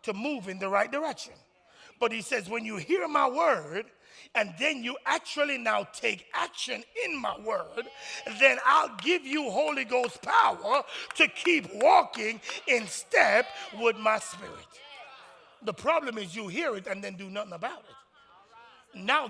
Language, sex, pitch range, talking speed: English, male, 185-235 Hz, 160 wpm